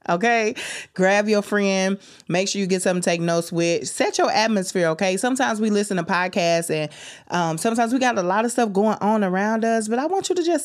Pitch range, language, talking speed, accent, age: 160-215 Hz, English, 230 wpm, American, 20-39